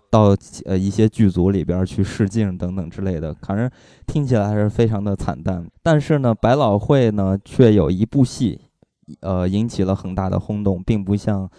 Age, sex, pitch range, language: 20-39, male, 95-120 Hz, Chinese